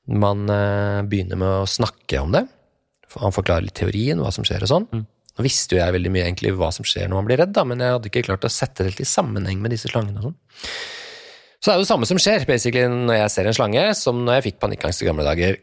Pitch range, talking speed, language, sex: 105-145 Hz, 245 wpm, English, male